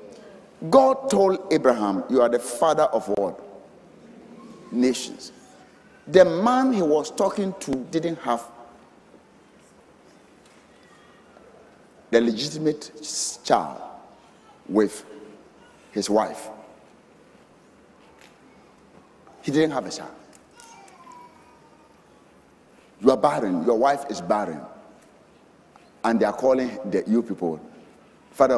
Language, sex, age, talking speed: English, male, 60-79, 90 wpm